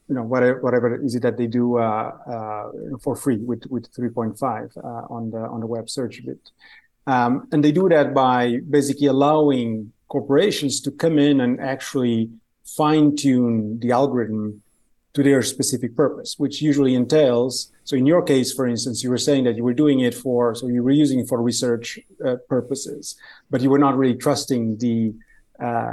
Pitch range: 120-140 Hz